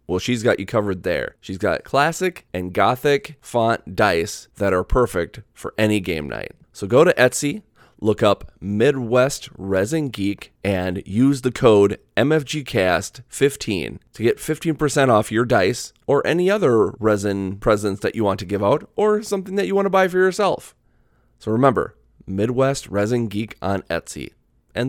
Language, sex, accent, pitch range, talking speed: English, male, American, 100-150 Hz, 165 wpm